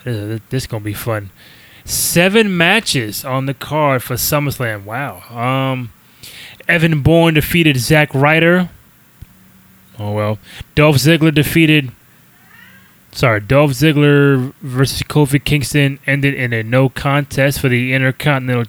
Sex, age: male, 20-39